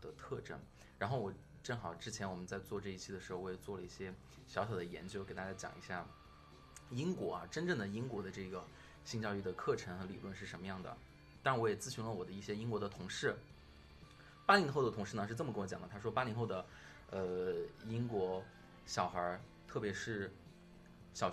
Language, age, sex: Chinese, 20-39, male